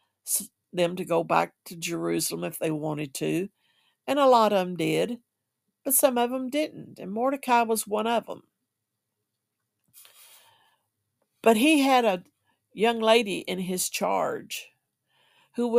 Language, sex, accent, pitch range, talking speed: English, female, American, 170-230 Hz, 140 wpm